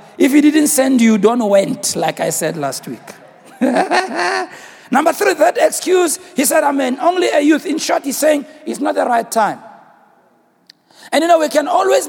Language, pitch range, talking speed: English, 250-325 Hz, 185 wpm